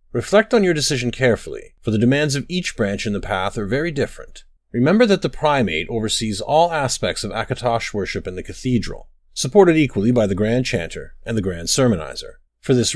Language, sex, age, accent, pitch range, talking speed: English, male, 30-49, American, 110-140 Hz, 195 wpm